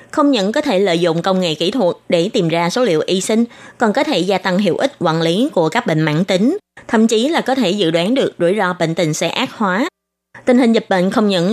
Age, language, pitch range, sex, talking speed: 20-39, Vietnamese, 180-255 Hz, female, 270 wpm